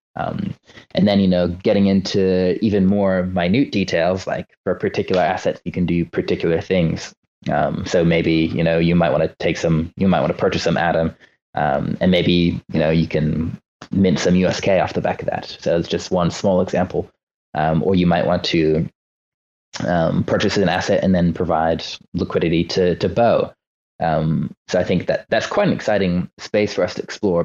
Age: 20-39